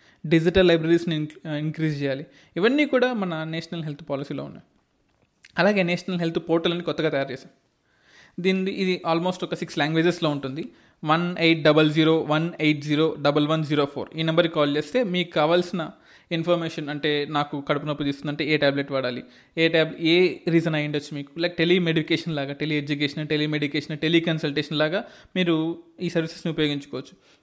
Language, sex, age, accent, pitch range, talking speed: Telugu, male, 20-39, native, 150-180 Hz, 160 wpm